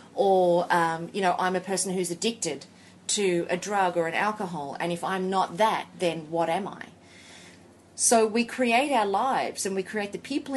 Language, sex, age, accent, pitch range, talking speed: English, female, 30-49, Australian, 180-235 Hz, 195 wpm